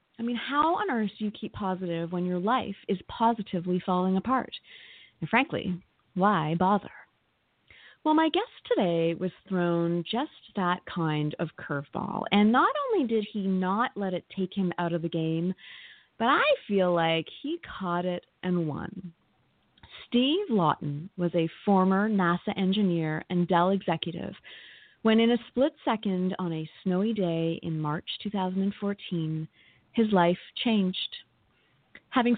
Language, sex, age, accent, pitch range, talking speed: English, female, 30-49, American, 175-225 Hz, 150 wpm